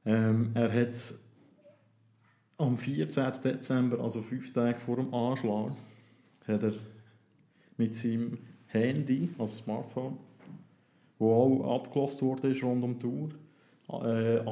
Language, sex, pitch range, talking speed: German, male, 115-130 Hz, 115 wpm